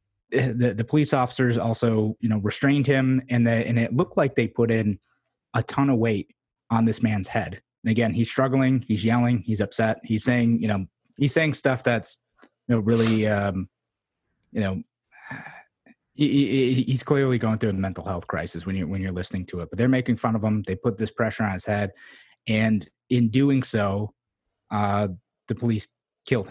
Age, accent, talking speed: 30-49, American, 195 wpm